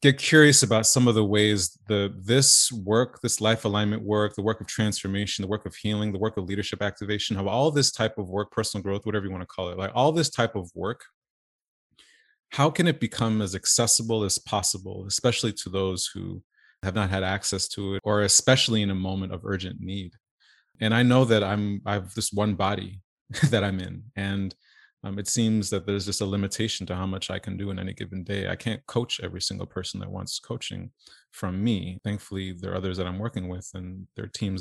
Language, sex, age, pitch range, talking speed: English, male, 30-49, 95-110 Hz, 220 wpm